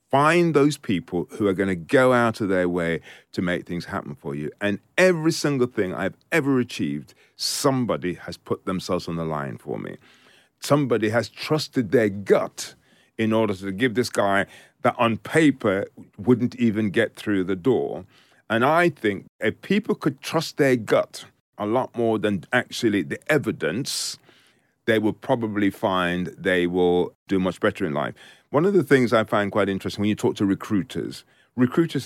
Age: 40-59